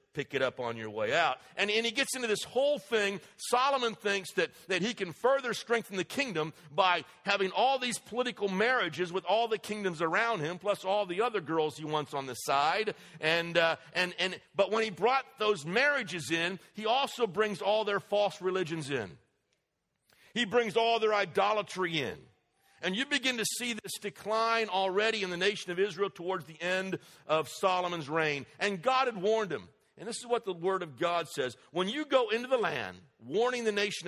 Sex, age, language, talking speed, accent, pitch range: male, 50-69, English, 200 wpm, American, 170-230 Hz